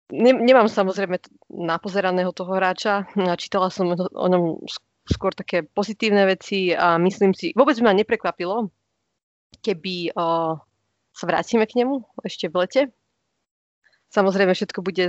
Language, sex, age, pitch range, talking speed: Slovak, female, 20-39, 180-205 Hz, 125 wpm